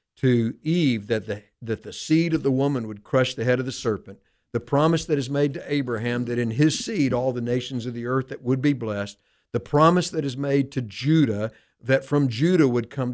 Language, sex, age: English, male, 50-69